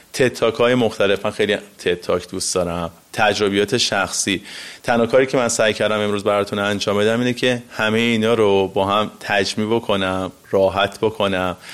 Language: Persian